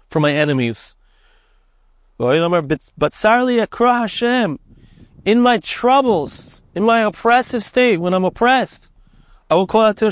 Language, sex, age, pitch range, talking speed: English, male, 30-49, 140-205 Hz, 105 wpm